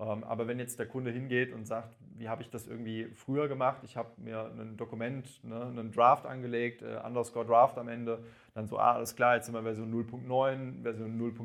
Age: 30-49